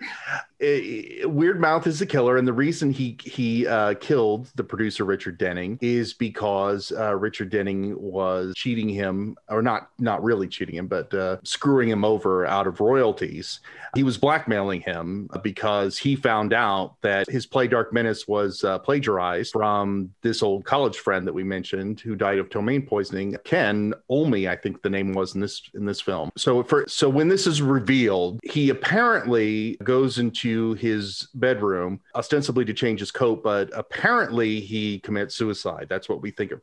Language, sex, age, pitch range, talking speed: English, male, 40-59, 100-120 Hz, 180 wpm